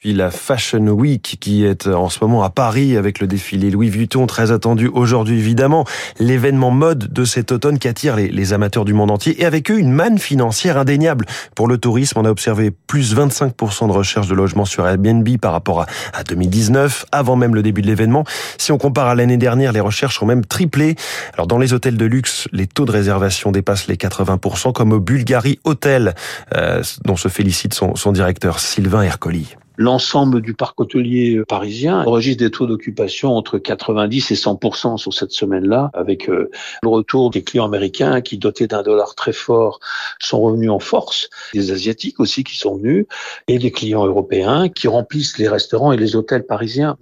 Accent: French